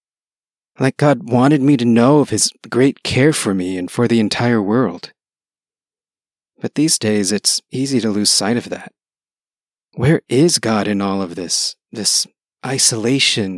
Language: English